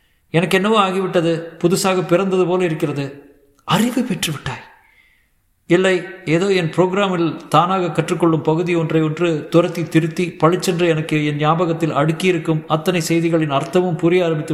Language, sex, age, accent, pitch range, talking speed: Tamil, male, 50-69, native, 110-165 Hz, 130 wpm